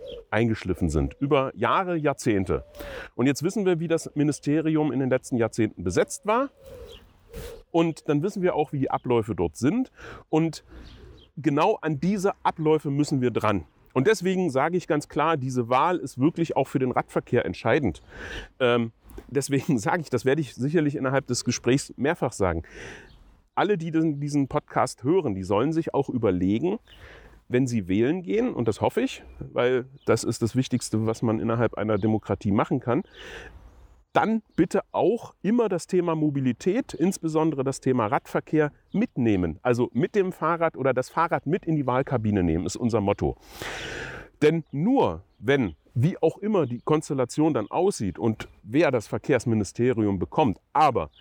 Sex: male